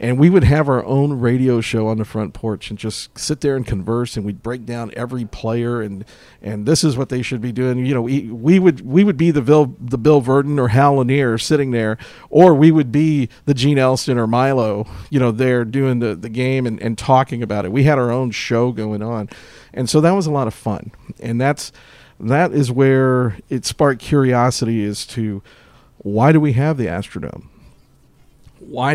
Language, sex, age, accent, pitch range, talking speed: English, male, 50-69, American, 115-140 Hz, 215 wpm